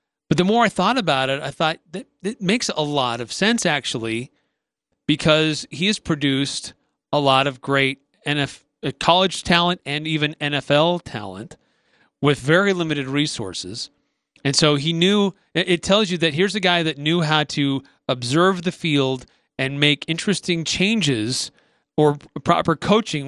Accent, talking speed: American, 155 wpm